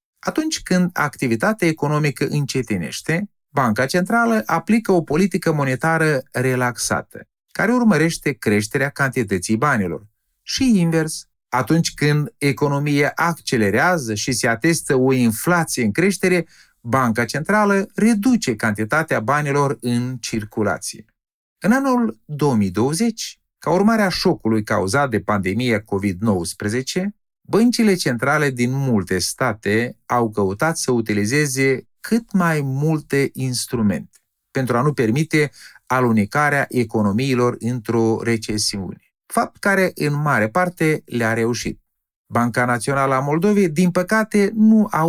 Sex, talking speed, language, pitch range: male, 110 wpm, Romanian, 120-175 Hz